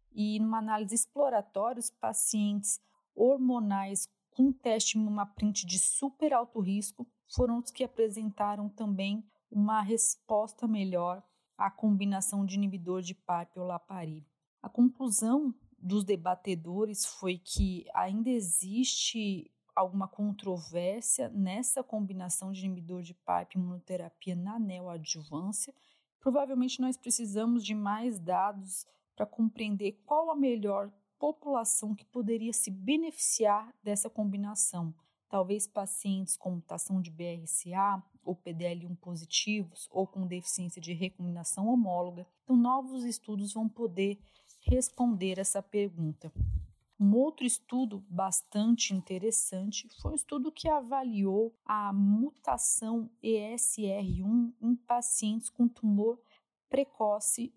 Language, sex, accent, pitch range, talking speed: Portuguese, female, Brazilian, 190-235 Hz, 115 wpm